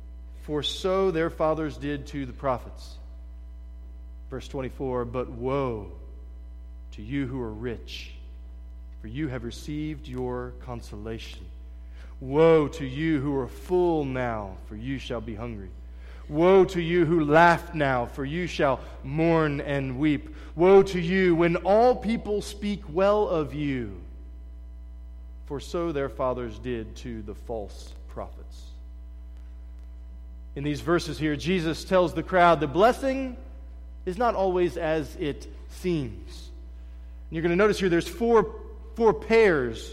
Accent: American